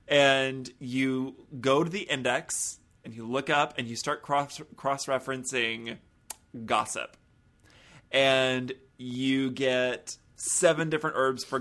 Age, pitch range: 30-49, 130-155 Hz